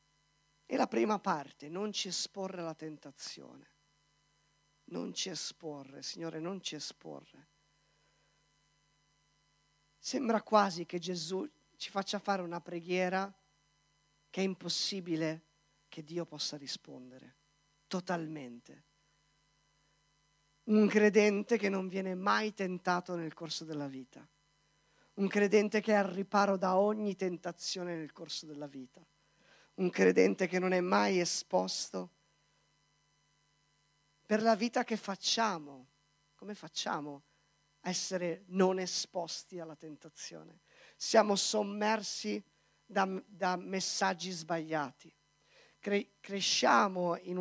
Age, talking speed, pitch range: 50-69, 110 wpm, 145-195 Hz